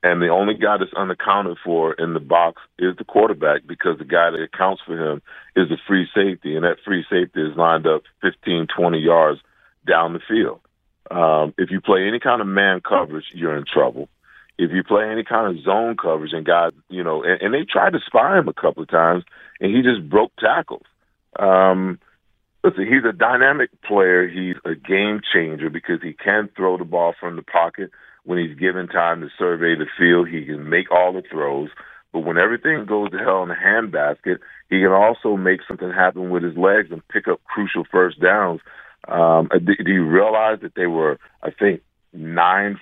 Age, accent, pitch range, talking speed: 40-59, American, 85-100 Hz, 200 wpm